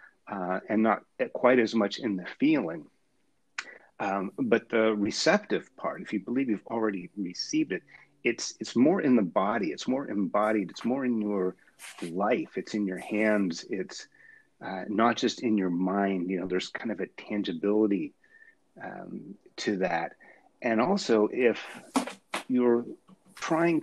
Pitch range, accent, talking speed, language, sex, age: 95-125 Hz, American, 155 wpm, English, male, 40-59